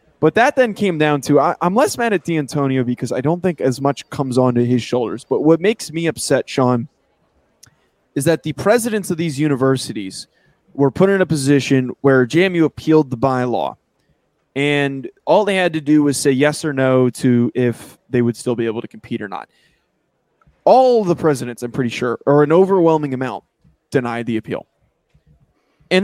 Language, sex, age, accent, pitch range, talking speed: English, male, 20-39, American, 130-175 Hz, 185 wpm